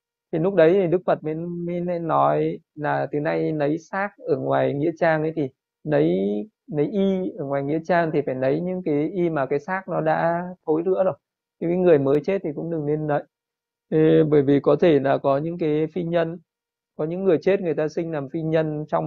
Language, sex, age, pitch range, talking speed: Vietnamese, male, 20-39, 150-175 Hz, 225 wpm